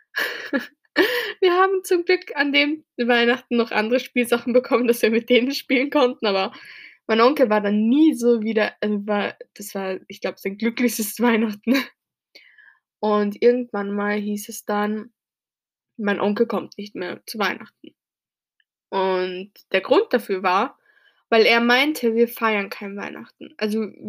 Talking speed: 145 wpm